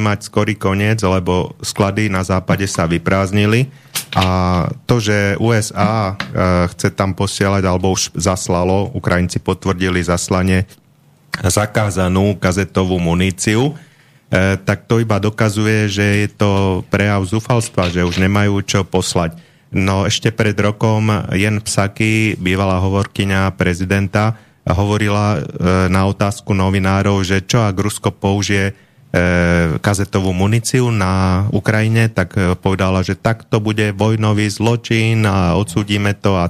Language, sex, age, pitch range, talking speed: Slovak, male, 30-49, 95-110 Hz, 120 wpm